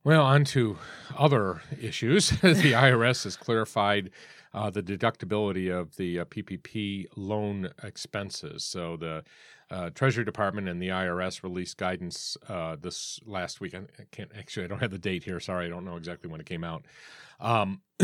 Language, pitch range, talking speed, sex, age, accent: English, 85-115 Hz, 170 wpm, male, 40-59, American